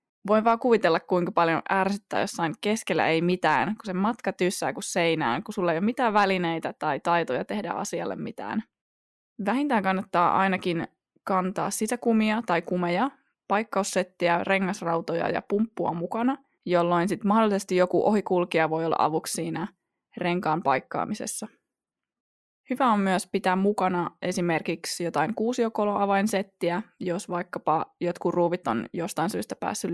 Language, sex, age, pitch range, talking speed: Finnish, female, 20-39, 170-215 Hz, 130 wpm